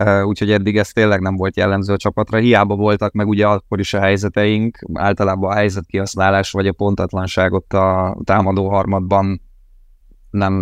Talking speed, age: 160 wpm, 20-39